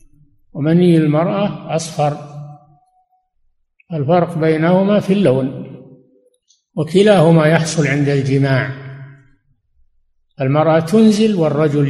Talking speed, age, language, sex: 70 wpm, 60-79, Arabic, male